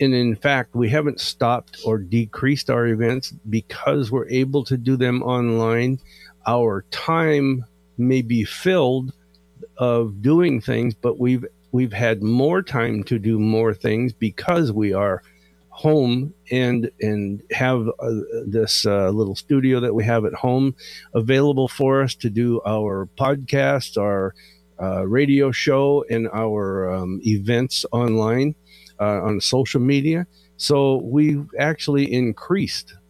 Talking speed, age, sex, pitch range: 140 wpm, 50-69, male, 105-140 Hz